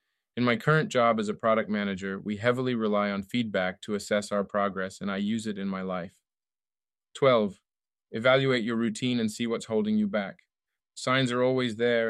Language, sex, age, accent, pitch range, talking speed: English, male, 30-49, American, 105-130 Hz, 190 wpm